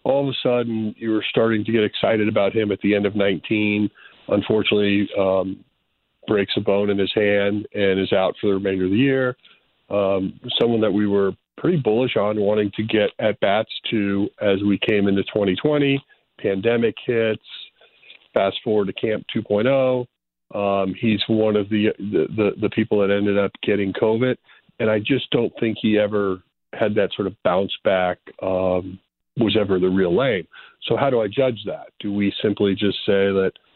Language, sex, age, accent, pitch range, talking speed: English, male, 40-59, American, 100-110 Hz, 180 wpm